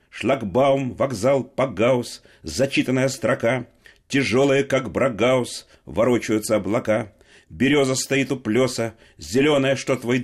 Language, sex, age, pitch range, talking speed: Russian, male, 40-59, 110-140 Hz, 100 wpm